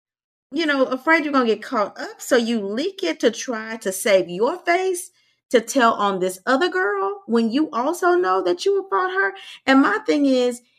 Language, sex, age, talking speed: English, female, 30-49, 210 wpm